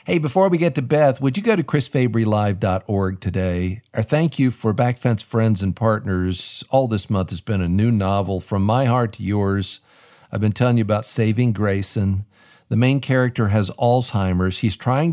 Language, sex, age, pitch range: English, male, 50-69, 105-140 Hz